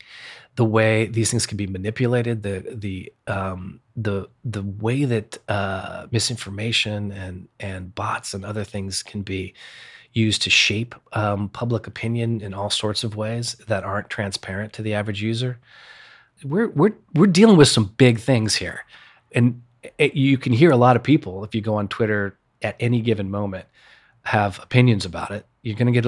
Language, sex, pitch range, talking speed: English, male, 105-125 Hz, 175 wpm